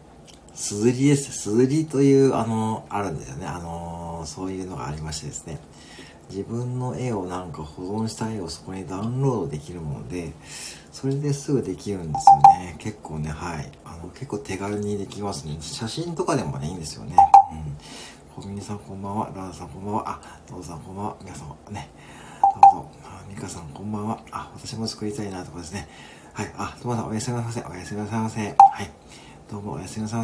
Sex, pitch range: male, 85-130 Hz